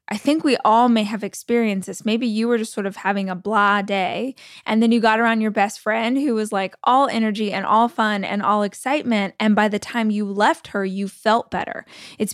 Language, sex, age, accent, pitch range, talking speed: English, female, 20-39, American, 200-235 Hz, 235 wpm